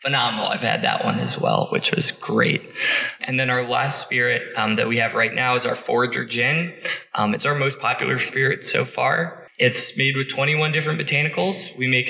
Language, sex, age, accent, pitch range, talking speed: English, male, 20-39, American, 120-135 Hz, 205 wpm